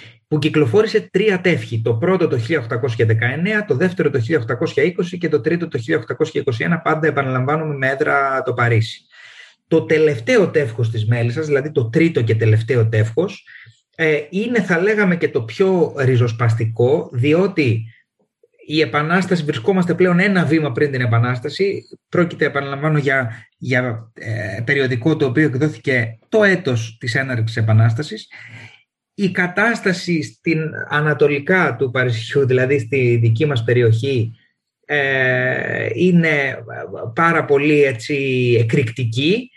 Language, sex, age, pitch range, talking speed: Greek, male, 30-49, 125-175 Hz, 125 wpm